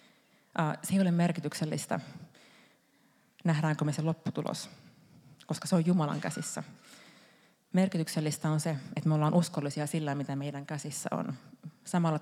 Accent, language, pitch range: native, Finnish, 150-180 Hz